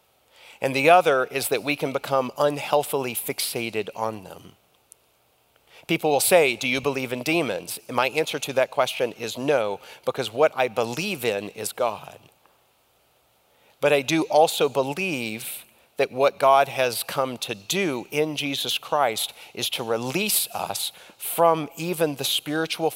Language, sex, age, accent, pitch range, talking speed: English, male, 40-59, American, 135-180 Hz, 150 wpm